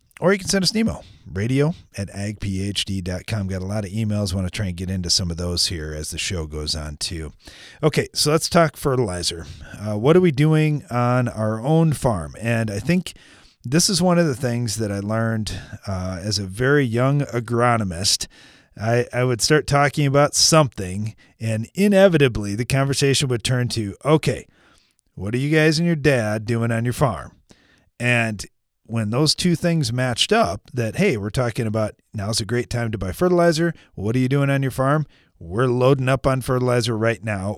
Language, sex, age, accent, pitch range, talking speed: English, male, 30-49, American, 100-145 Hz, 195 wpm